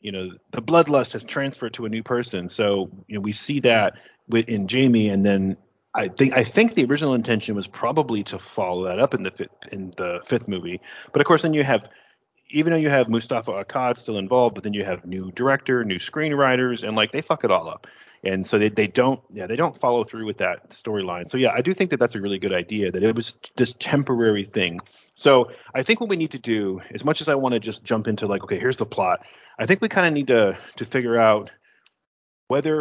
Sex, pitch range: male, 100-140 Hz